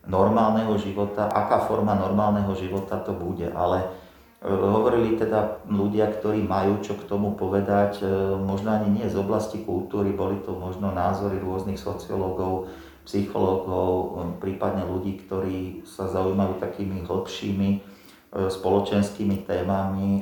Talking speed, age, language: 120 wpm, 40-59, Slovak